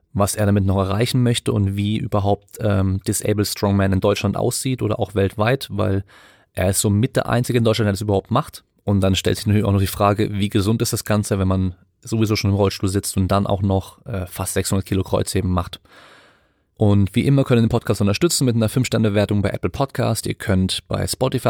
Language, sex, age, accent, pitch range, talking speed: German, male, 30-49, German, 100-115 Hz, 225 wpm